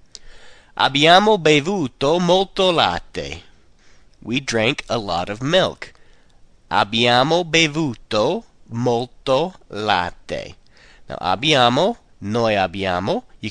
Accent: American